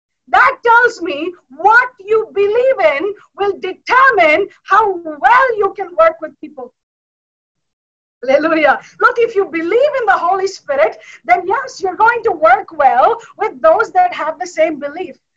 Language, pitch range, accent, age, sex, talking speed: English, 310-410 Hz, Indian, 50-69, female, 150 wpm